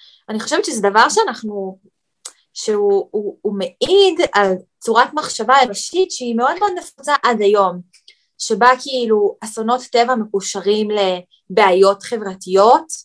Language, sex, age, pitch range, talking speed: Hebrew, female, 20-39, 195-260 Hz, 125 wpm